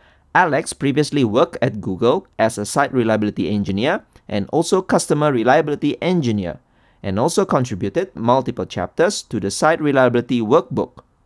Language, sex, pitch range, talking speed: English, male, 110-155 Hz, 135 wpm